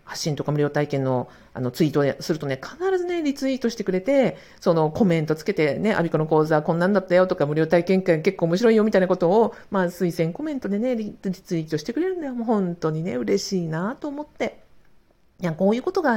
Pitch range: 170-230 Hz